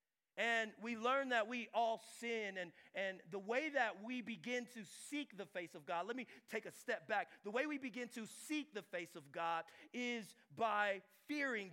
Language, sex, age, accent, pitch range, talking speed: English, male, 30-49, American, 190-250 Hz, 200 wpm